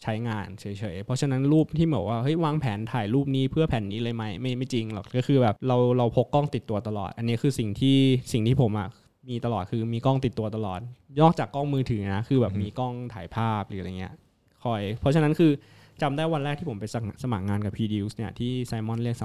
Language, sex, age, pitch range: Thai, male, 20-39, 105-135 Hz